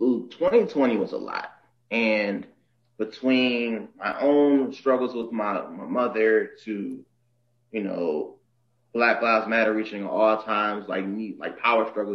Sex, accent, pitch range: male, American, 105-120 Hz